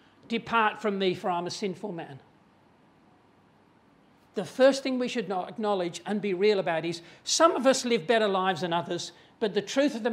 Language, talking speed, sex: English, 190 wpm, male